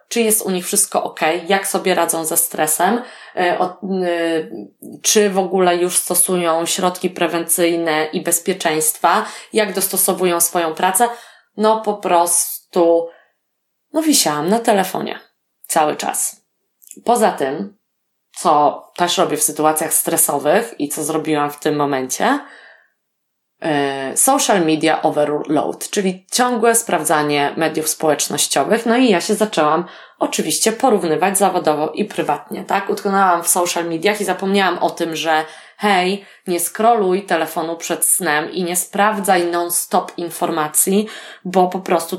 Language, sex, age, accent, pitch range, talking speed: Polish, female, 20-39, native, 165-195 Hz, 125 wpm